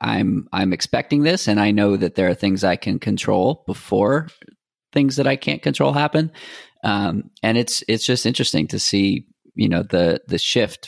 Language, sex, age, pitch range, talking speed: English, male, 30-49, 95-115 Hz, 190 wpm